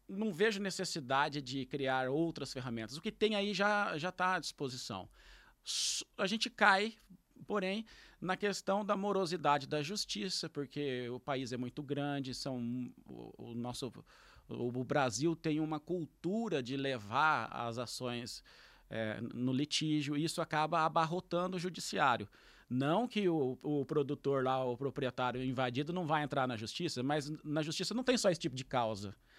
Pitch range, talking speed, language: 135-185 Hz, 160 wpm, Portuguese